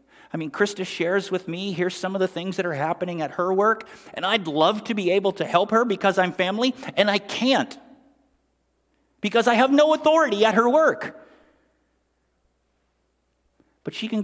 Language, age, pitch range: English, 50-69, 130-215 Hz